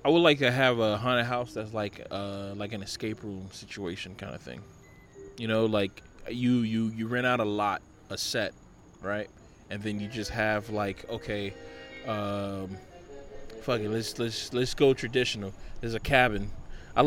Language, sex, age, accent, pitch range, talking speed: English, male, 20-39, American, 105-125 Hz, 180 wpm